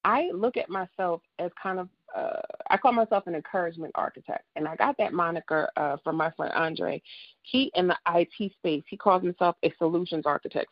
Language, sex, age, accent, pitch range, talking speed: English, female, 30-49, American, 165-210 Hz, 190 wpm